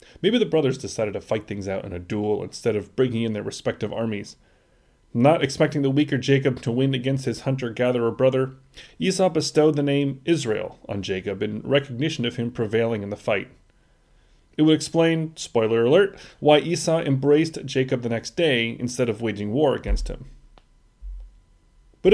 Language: English